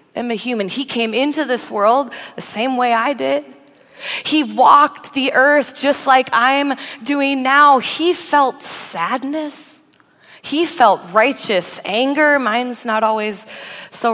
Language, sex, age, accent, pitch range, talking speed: English, female, 20-39, American, 195-255 Hz, 140 wpm